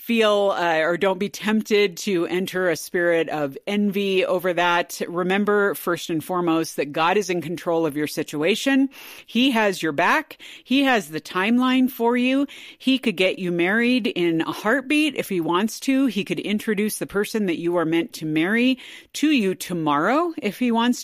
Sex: female